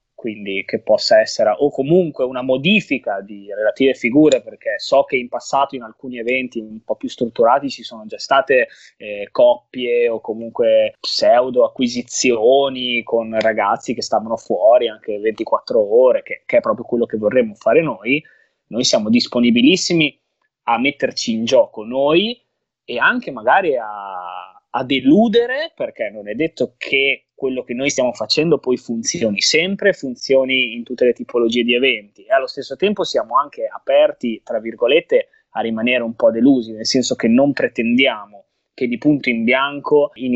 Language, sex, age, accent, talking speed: Italian, male, 20-39, native, 160 wpm